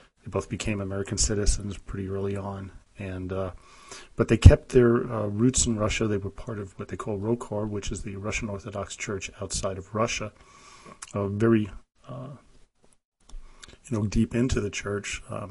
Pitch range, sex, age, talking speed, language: 100-115 Hz, male, 40-59, 175 wpm, English